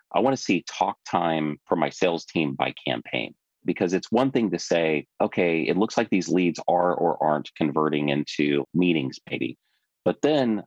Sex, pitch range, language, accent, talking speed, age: male, 80-100 Hz, English, American, 180 wpm, 40-59